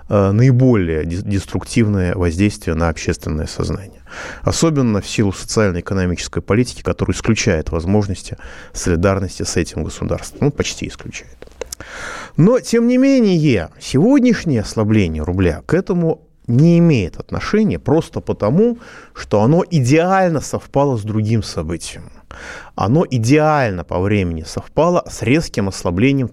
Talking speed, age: 115 wpm, 30-49